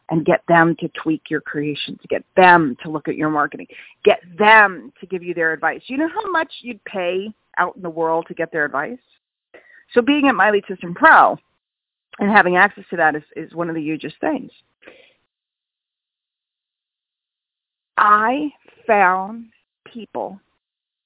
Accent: American